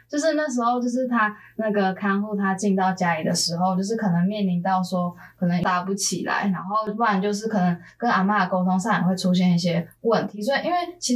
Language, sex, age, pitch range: Chinese, female, 10-29, 185-230 Hz